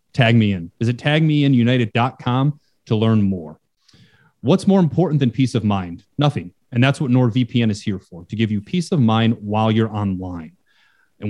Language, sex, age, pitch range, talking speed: English, male, 30-49, 110-135 Hz, 175 wpm